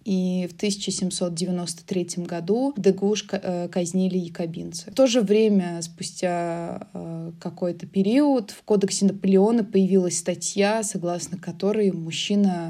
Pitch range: 170-200 Hz